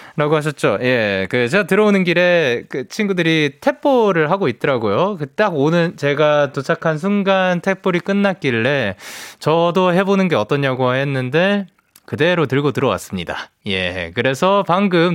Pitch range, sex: 110-180 Hz, male